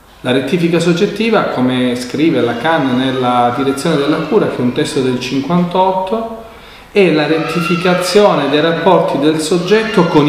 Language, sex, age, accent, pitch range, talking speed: Italian, male, 40-59, native, 120-170 Hz, 140 wpm